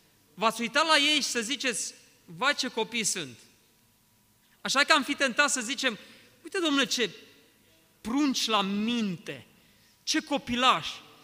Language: Romanian